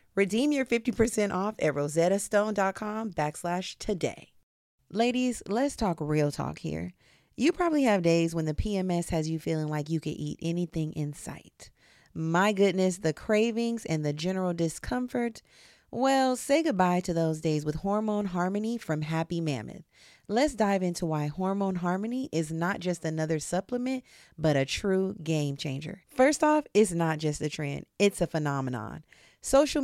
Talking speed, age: 155 wpm, 30-49